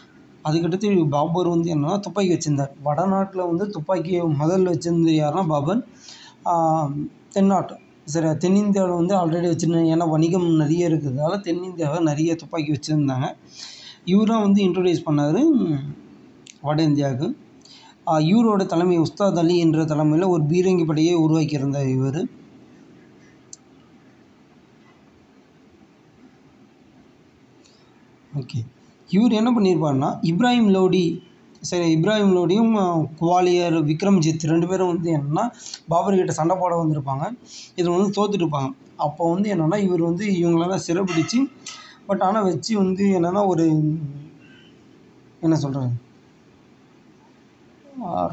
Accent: native